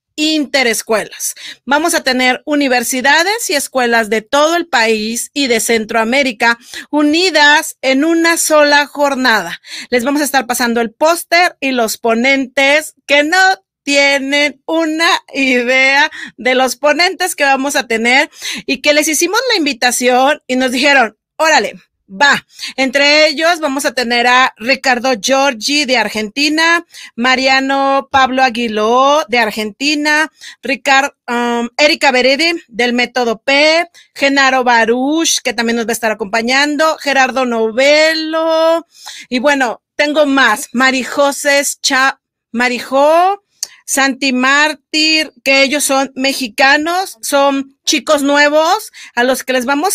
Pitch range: 250-300 Hz